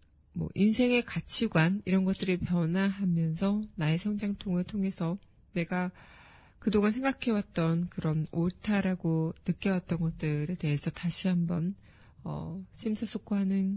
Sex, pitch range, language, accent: female, 170-205 Hz, Korean, native